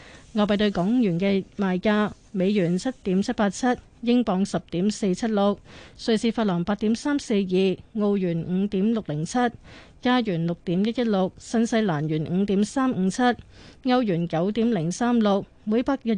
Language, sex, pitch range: Chinese, female, 185-230 Hz